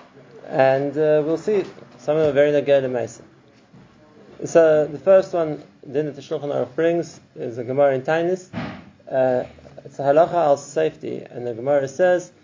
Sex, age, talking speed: male, 20-39, 160 wpm